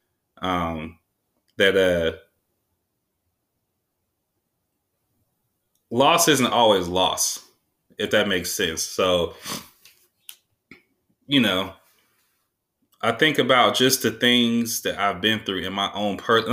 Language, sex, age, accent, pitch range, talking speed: English, male, 20-39, American, 90-115 Hz, 100 wpm